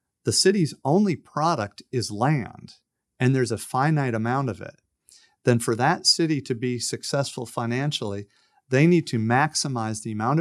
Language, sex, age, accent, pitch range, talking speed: English, male, 40-59, American, 115-150 Hz, 155 wpm